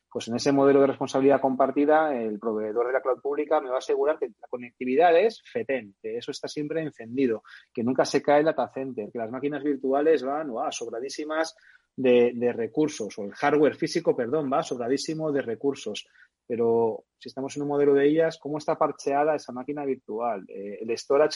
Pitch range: 130-155 Hz